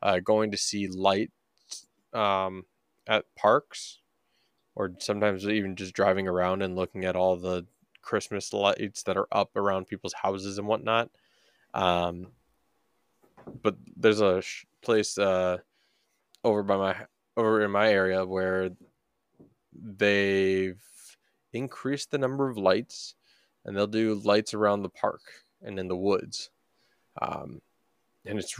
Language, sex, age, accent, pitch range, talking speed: English, male, 20-39, American, 95-110 Hz, 135 wpm